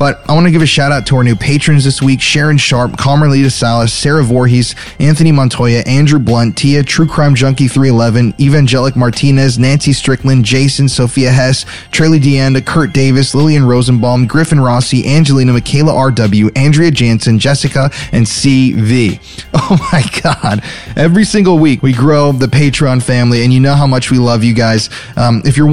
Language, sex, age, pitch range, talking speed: English, male, 20-39, 115-140 Hz, 175 wpm